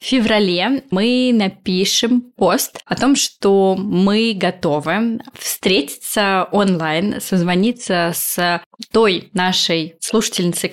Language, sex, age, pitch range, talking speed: Russian, female, 20-39, 180-220 Hz, 95 wpm